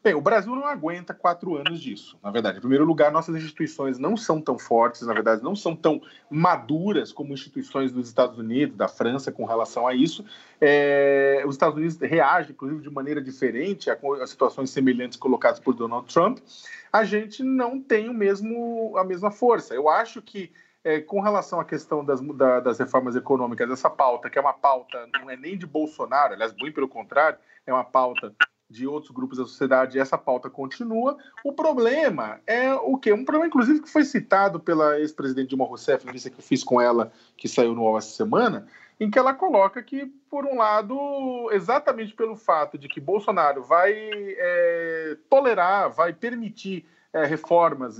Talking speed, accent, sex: 180 wpm, Brazilian, male